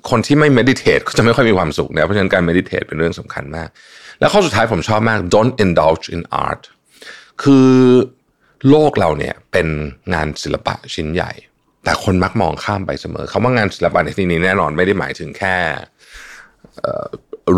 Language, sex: Thai, male